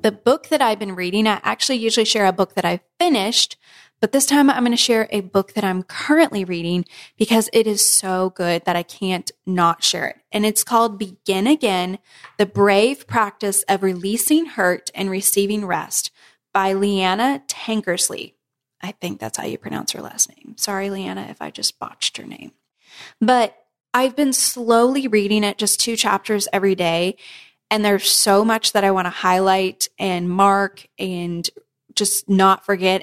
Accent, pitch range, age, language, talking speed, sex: American, 185-225 Hz, 10-29, English, 180 wpm, female